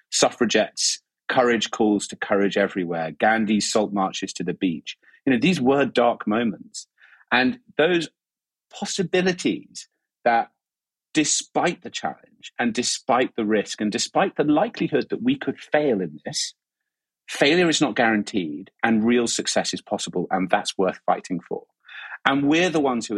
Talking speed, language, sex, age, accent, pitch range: 150 wpm, English, male, 40-59, British, 100-155 Hz